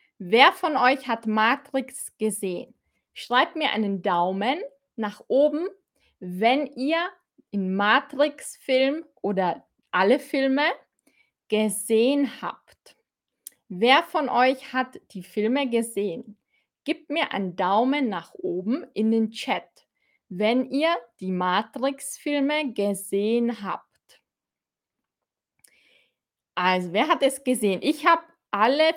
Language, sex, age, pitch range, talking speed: German, female, 20-39, 210-270 Hz, 105 wpm